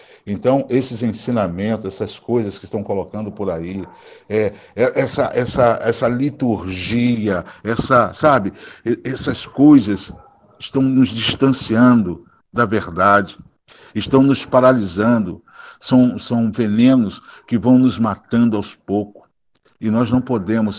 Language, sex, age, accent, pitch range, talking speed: Portuguese, male, 60-79, Brazilian, 100-125 Hz, 120 wpm